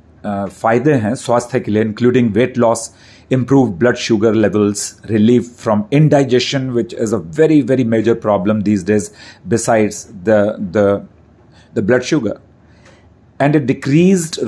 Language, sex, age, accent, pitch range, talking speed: Hindi, male, 40-59, native, 110-135 Hz, 135 wpm